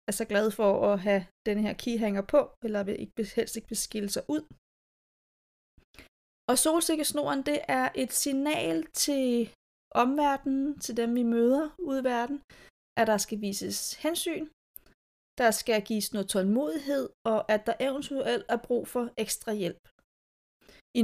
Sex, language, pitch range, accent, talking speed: female, Danish, 205-255 Hz, native, 150 wpm